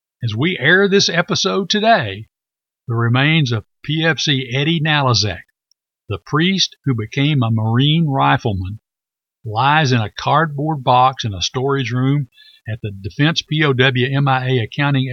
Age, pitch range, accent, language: 60-79, 115-145 Hz, American, English